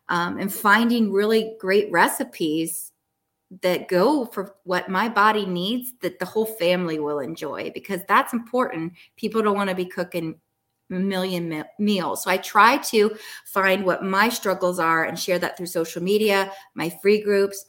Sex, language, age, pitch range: female, English, 20-39, 170-200 Hz